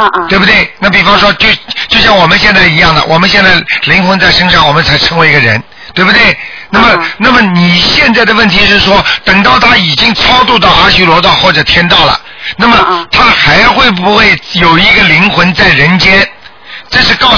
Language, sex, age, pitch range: Chinese, male, 50-69, 175-220 Hz